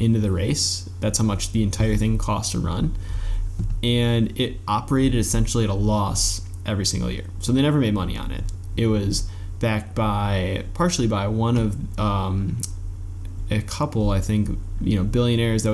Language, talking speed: English, 175 wpm